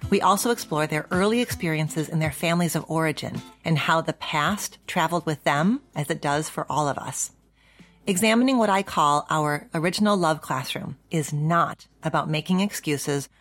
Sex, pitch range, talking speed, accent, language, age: female, 150-180 Hz, 170 wpm, American, English, 40-59